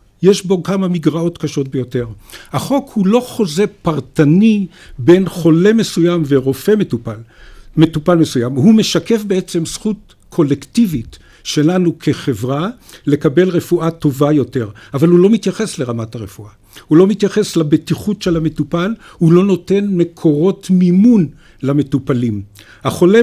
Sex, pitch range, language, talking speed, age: male, 145-185 Hz, Hebrew, 125 wpm, 50-69